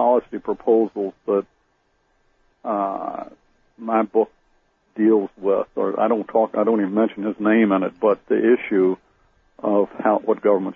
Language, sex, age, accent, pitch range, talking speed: English, male, 60-79, American, 95-110 Hz, 150 wpm